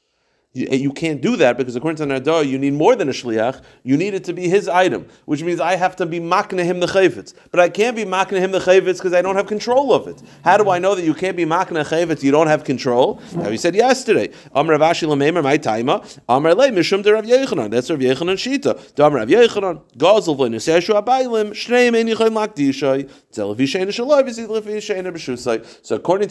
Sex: male